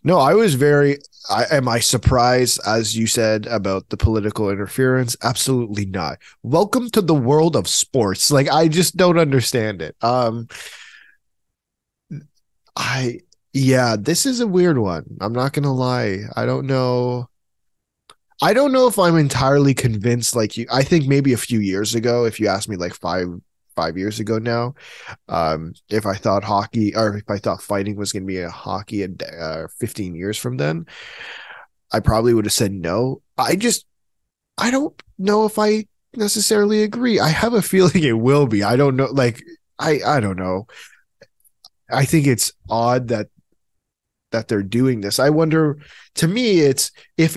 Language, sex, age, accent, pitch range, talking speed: English, male, 20-39, American, 105-145 Hz, 175 wpm